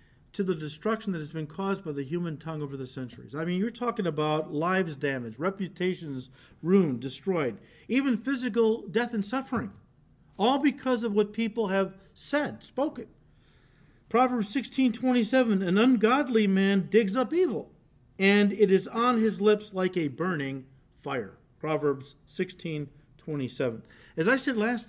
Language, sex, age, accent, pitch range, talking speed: English, male, 50-69, American, 155-220 Hz, 150 wpm